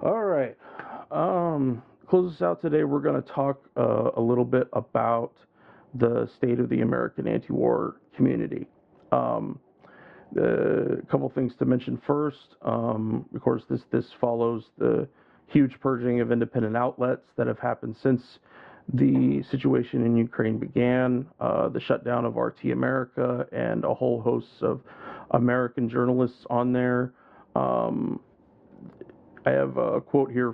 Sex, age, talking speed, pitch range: male, 40-59, 145 wpm, 115-130 Hz